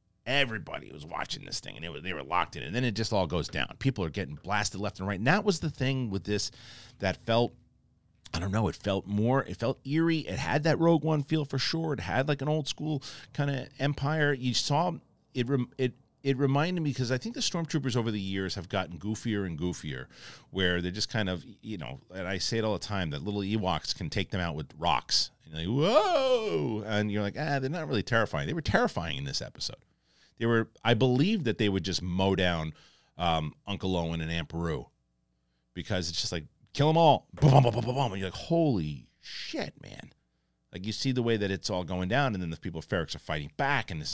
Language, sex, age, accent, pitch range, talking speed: English, male, 40-59, American, 95-135 Hz, 240 wpm